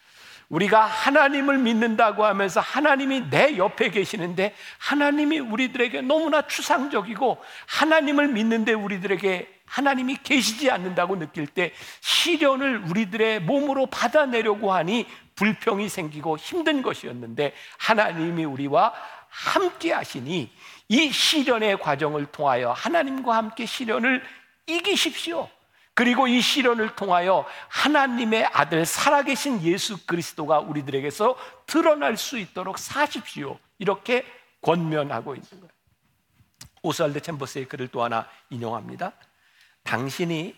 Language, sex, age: Korean, male, 50-69